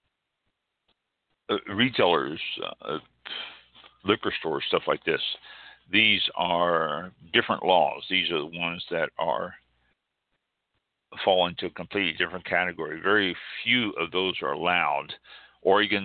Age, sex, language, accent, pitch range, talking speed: 60-79, male, English, American, 80-95 Hz, 115 wpm